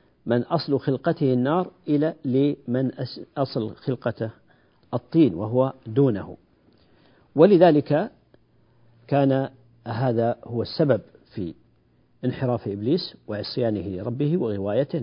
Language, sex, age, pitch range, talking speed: Arabic, male, 50-69, 115-135 Hz, 90 wpm